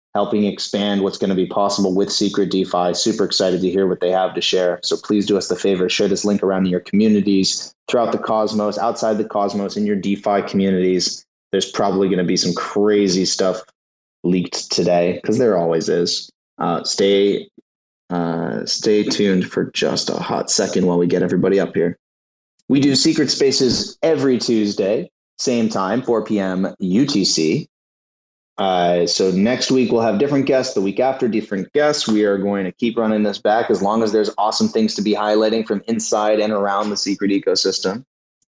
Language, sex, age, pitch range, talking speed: English, male, 30-49, 90-110 Hz, 180 wpm